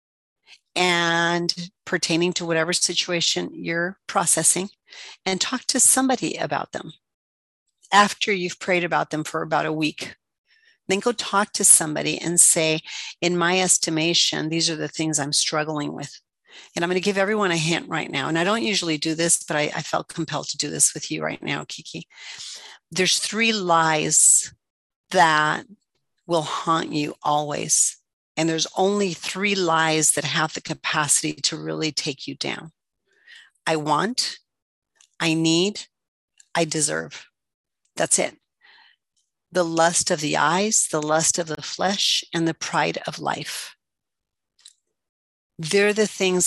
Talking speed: 150 wpm